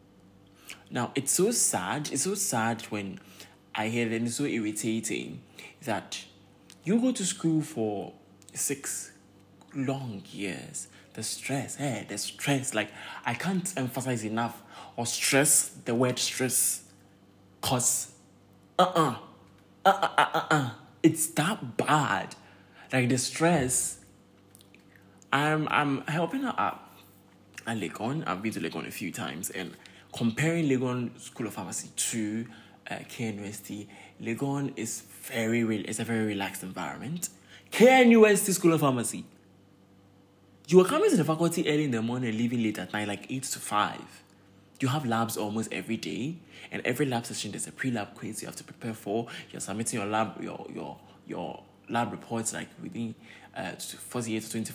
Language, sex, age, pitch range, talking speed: English, male, 20-39, 100-135 Hz, 160 wpm